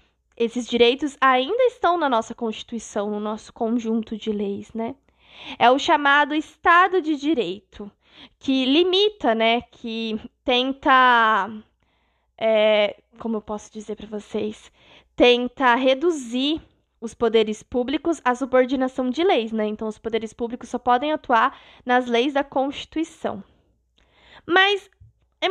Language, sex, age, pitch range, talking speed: Portuguese, female, 20-39, 225-305 Hz, 125 wpm